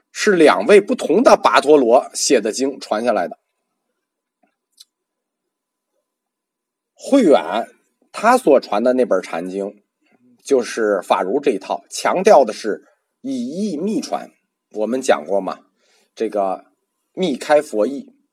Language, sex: Chinese, male